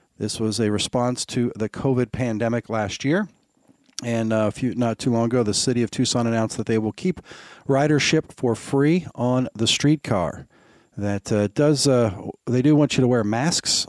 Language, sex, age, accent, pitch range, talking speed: English, male, 40-59, American, 105-125 Hz, 185 wpm